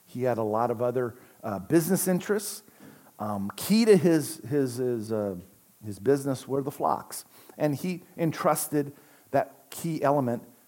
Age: 50-69